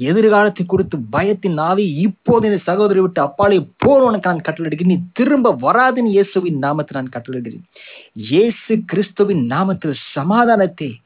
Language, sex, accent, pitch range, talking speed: English, male, Indian, 135-195 Hz, 125 wpm